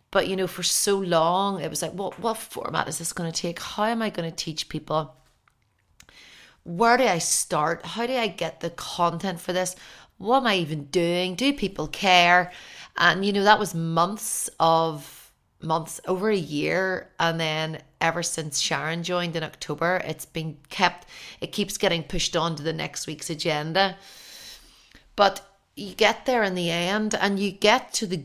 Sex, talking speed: female, 190 wpm